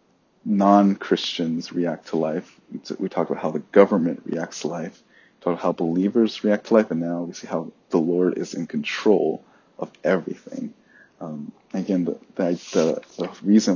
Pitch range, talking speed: 85-100 Hz, 175 wpm